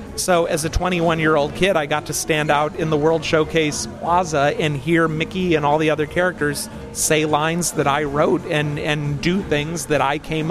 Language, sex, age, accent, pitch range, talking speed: Dutch, male, 30-49, American, 150-170 Hz, 200 wpm